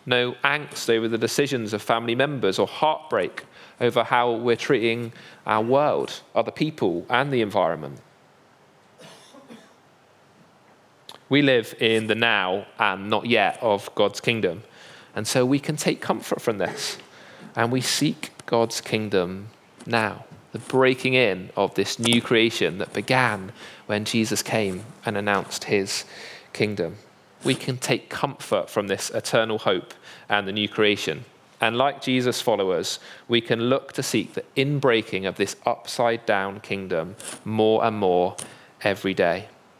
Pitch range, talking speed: 105-130 Hz, 140 wpm